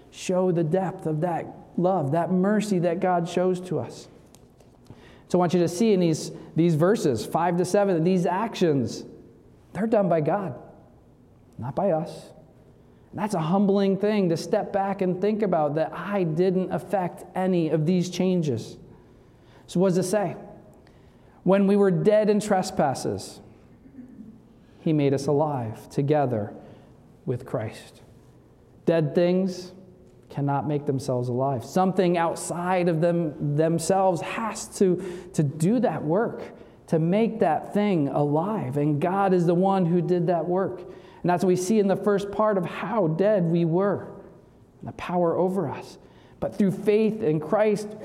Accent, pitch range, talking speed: American, 155-190 Hz, 160 wpm